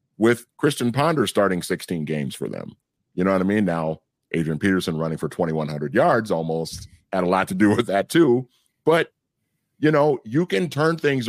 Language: English